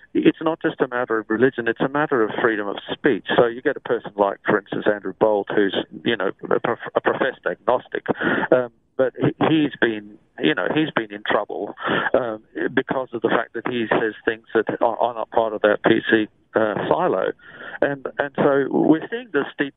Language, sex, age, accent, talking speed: English, male, 50-69, British, 205 wpm